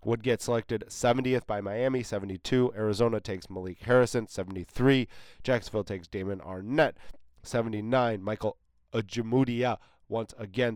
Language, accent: English, American